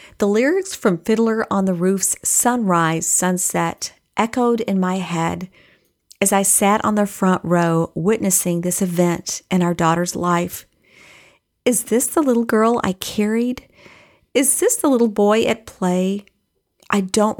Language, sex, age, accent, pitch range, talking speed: English, female, 40-59, American, 175-210 Hz, 150 wpm